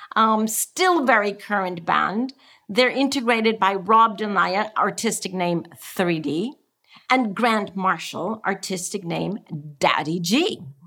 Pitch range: 175-225 Hz